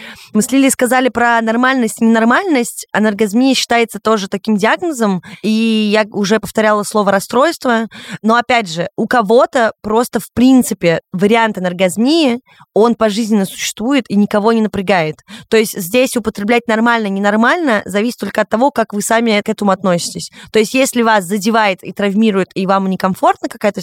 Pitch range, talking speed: 185-230 Hz, 160 wpm